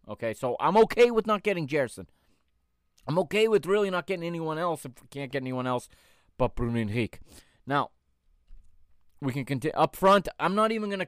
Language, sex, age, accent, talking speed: English, male, 30-49, American, 195 wpm